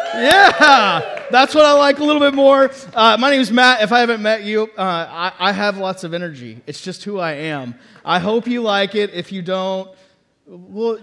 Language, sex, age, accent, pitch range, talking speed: English, male, 30-49, American, 195-250 Hz, 220 wpm